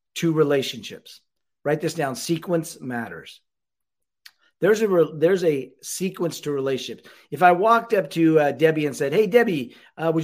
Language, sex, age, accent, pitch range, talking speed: English, male, 40-59, American, 150-190 Hz, 150 wpm